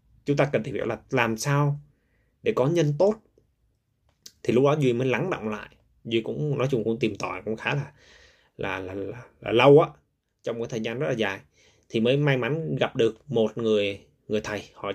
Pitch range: 105-145 Hz